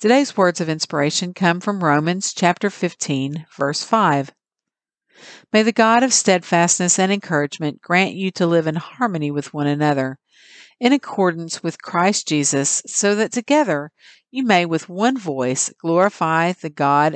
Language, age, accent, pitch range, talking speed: English, 50-69, American, 145-195 Hz, 150 wpm